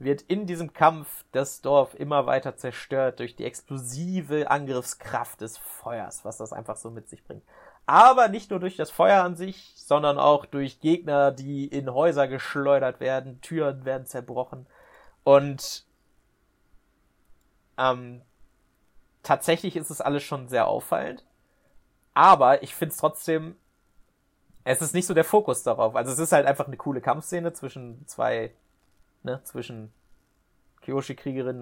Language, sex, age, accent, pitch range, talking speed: German, male, 30-49, German, 130-155 Hz, 145 wpm